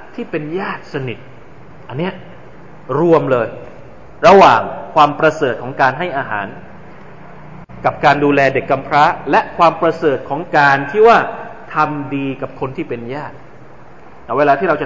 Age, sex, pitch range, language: 20-39, male, 140-190 Hz, Thai